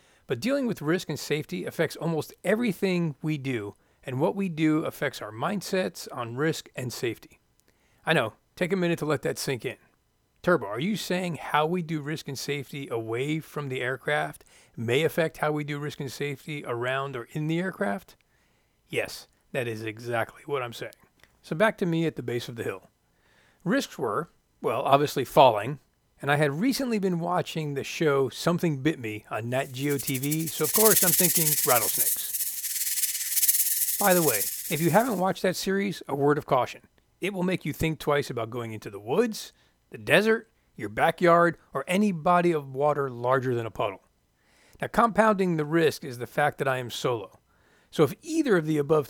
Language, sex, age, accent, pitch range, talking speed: English, male, 40-59, American, 135-180 Hz, 190 wpm